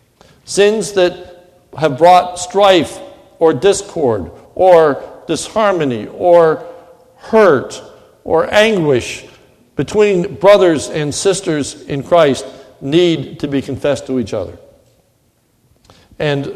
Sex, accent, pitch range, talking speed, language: male, American, 135-180 Hz, 100 wpm, English